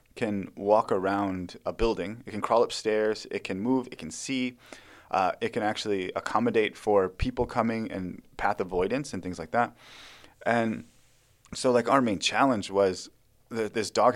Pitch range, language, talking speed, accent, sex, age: 100-125 Hz, English, 170 wpm, American, male, 30-49